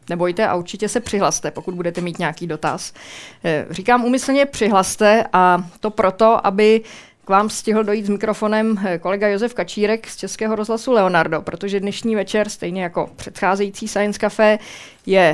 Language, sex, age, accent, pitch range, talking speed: Czech, female, 20-39, native, 180-215 Hz, 155 wpm